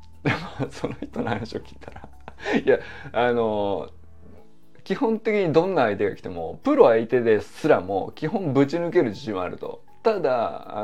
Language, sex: Japanese, male